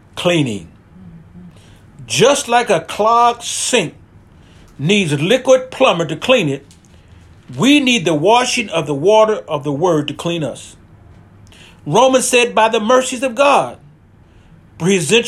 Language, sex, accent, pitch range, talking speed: English, male, American, 140-230 Hz, 135 wpm